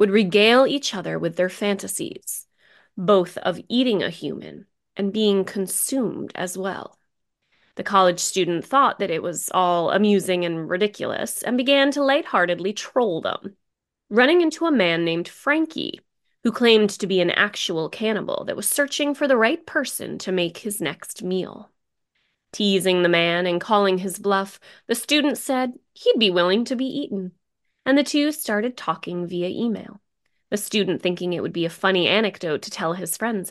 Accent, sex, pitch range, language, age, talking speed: American, female, 180-245 Hz, English, 20-39, 170 wpm